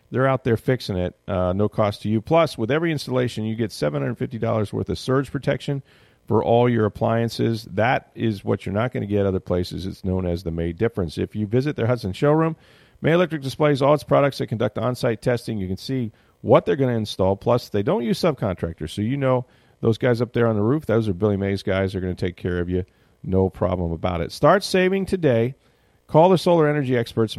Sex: male